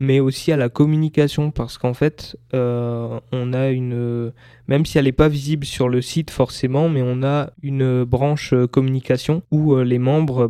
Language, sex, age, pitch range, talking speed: French, male, 20-39, 120-140 Hz, 175 wpm